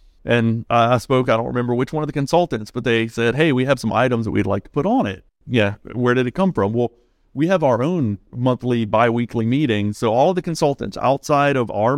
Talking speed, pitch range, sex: 235 wpm, 110-130 Hz, male